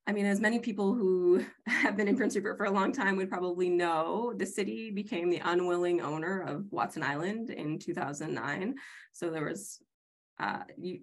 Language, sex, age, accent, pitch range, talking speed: English, female, 20-39, American, 170-205 Hz, 180 wpm